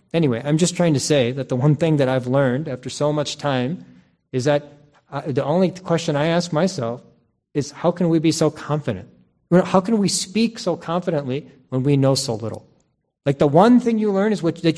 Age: 40-59